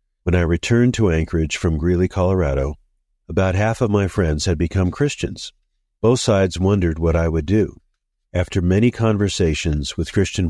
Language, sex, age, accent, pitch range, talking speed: English, male, 50-69, American, 80-100 Hz, 160 wpm